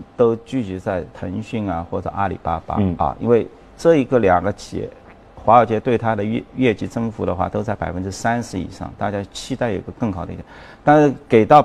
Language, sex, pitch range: Chinese, male, 95-130 Hz